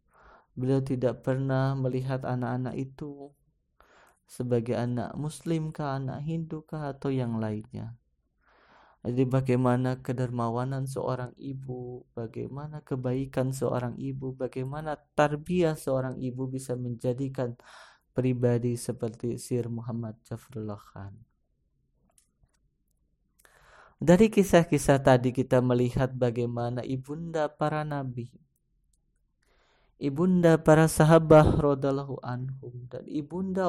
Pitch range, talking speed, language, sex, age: 125-155 Hz, 95 wpm, Indonesian, male, 20-39